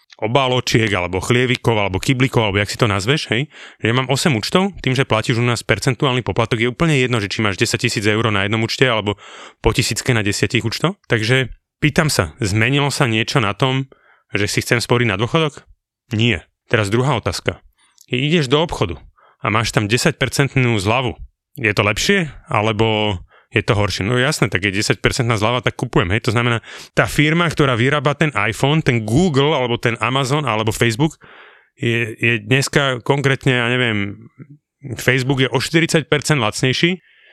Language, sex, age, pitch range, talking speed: Slovak, male, 30-49, 110-140 Hz, 180 wpm